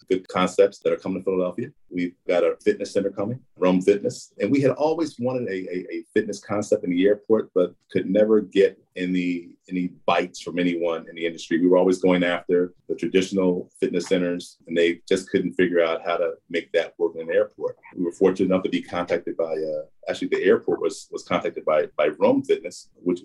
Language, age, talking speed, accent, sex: English, 40-59, 215 wpm, American, male